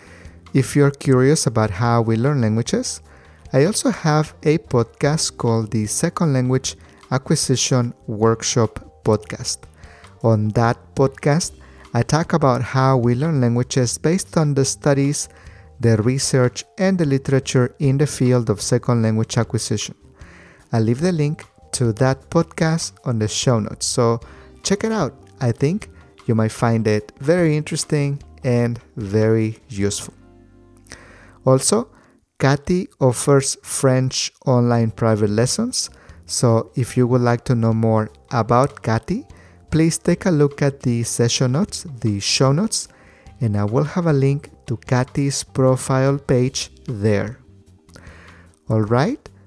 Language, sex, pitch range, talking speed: English, male, 110-140 Hz, 135 wpm